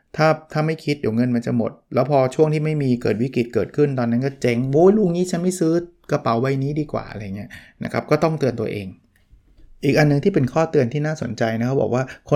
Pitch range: 120-150 Hz